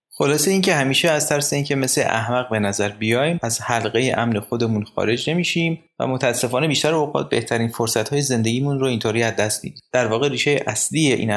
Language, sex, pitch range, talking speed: Persian, male, 110-145 Hz, 175 wpm